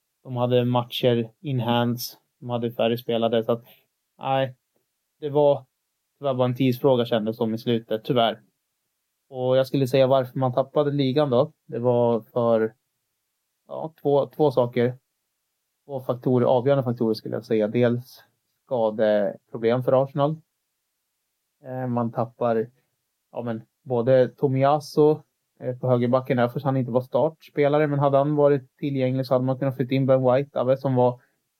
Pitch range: 115-135 Hz